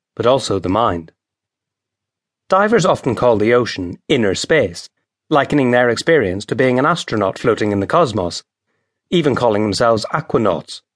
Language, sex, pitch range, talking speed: English, male, 105-150 Hz, 140 wpm